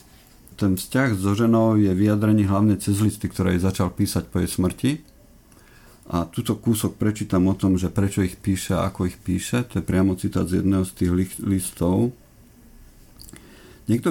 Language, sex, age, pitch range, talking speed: Slovak, male, 50-69, 95-105 Hz, 170 wpm